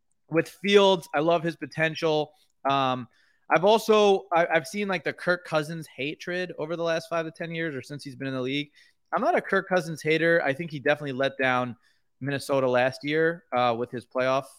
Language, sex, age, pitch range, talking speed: English, male, 20-39, 125-155 Hz, 205 wpm